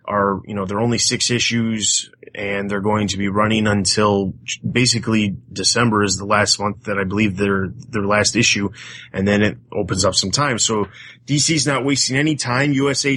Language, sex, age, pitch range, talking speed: English, male, 30-49, 105-135 Hz, 190 wpm